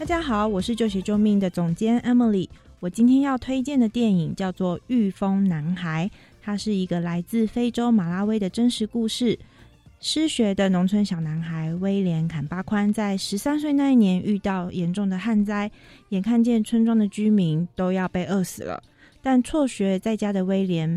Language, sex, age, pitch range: Chinese, female, 30-49, 170-215 Hz